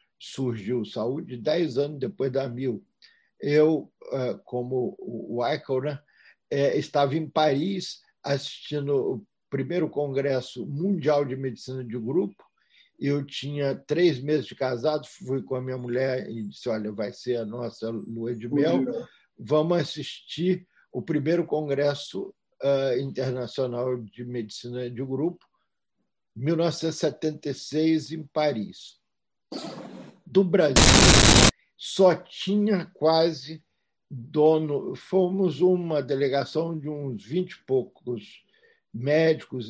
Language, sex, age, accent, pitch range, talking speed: Portuguese, male, 50-69, Brazilian, 130-160 Hz, 110 wpm